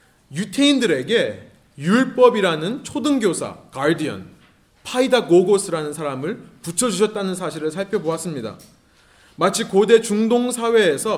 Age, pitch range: 30-49, 180-245 Hz